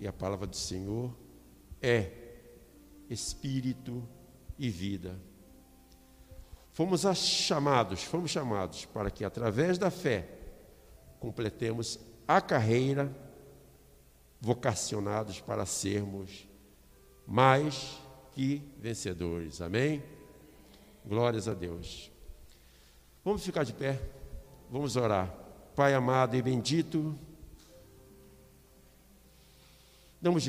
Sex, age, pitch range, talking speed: male, 60-79, 95-135 Hz, 85 wpm